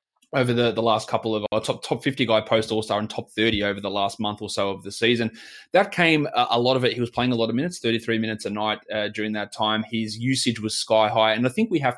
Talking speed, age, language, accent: 295 wpm, 20-39, English, Australian